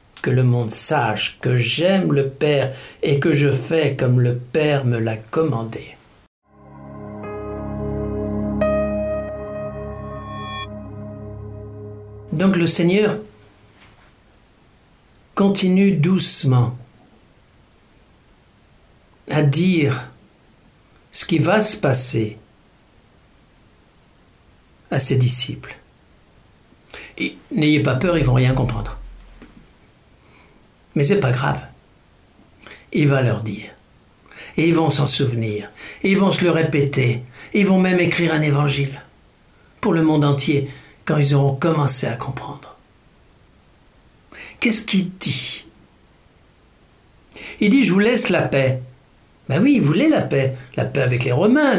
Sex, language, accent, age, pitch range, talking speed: male, French, French, 60-79, 110-160 Hz, 115 wpm